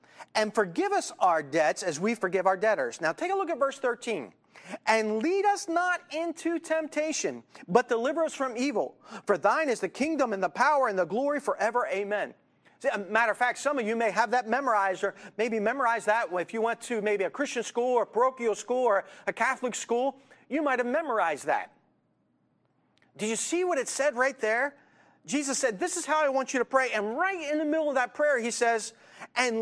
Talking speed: 220 wpm